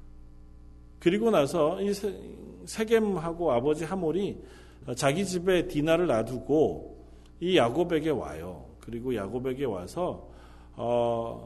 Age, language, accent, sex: 40-59, Korean, native, male